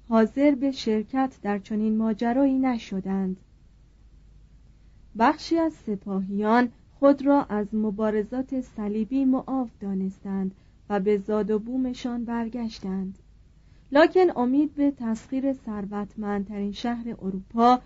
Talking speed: 95 wpm